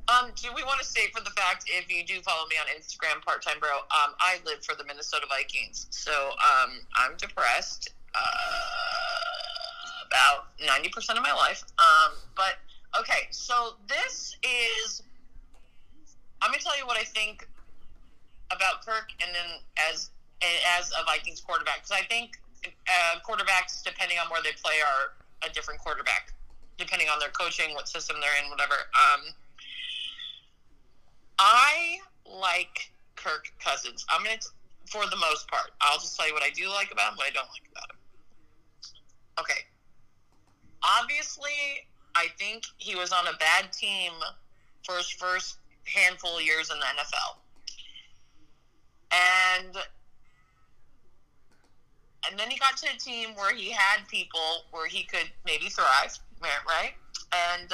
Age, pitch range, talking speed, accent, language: 30-49, 170-275 Hz, 150 wpm, American, English